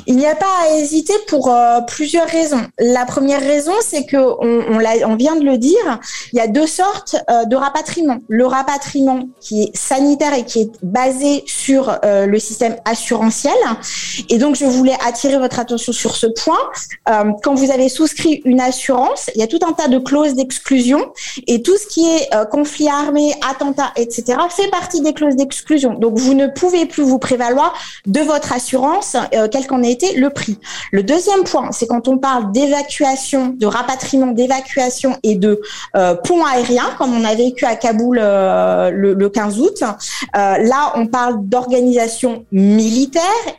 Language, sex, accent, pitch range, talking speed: French, female, French, 235-300 Hz, 185 wpm